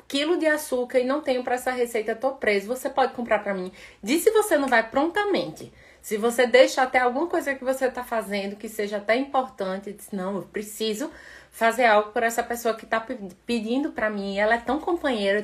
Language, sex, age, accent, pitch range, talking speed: Portuguese, female, 20-39, Brazilian, 200-260 Hz, 210 wpm